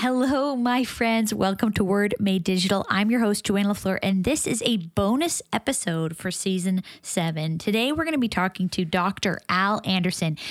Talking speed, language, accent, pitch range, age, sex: 185 wpm, English, American, 180-220 Hz, 20-39, female